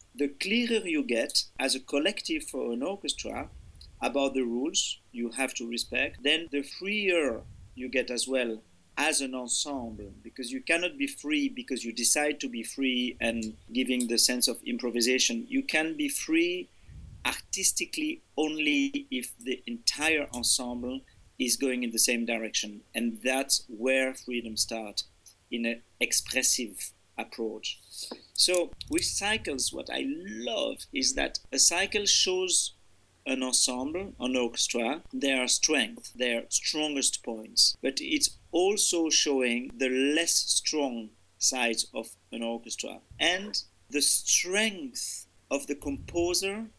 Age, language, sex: 50-69, English, male